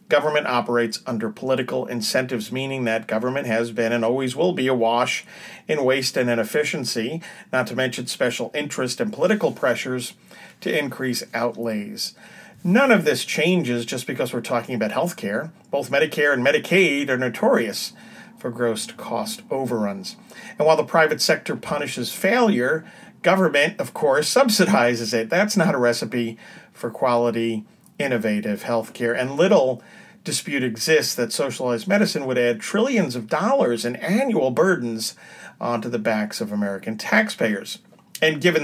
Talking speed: 145 wpm